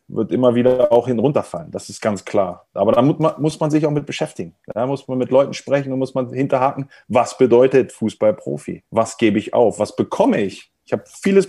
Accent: German